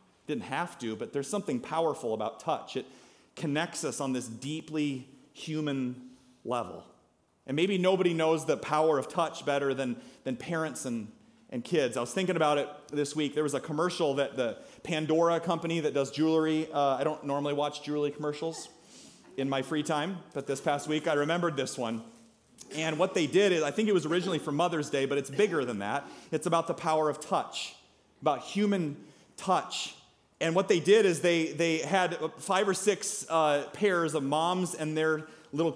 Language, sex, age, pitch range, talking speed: English, male, 30-49, 145-175 Hz, 190 wpm